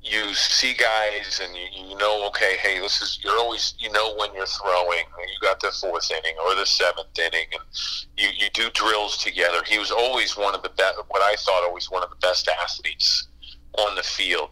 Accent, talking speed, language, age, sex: American, 220 wpm, English, 40-59, male